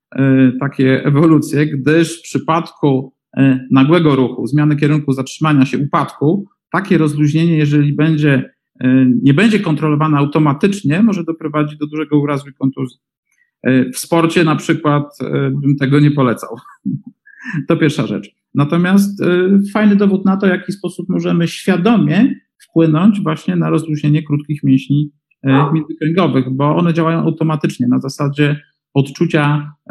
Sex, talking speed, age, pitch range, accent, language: male, 120 wpm, 50-69, 135-160 Hz, native, Polish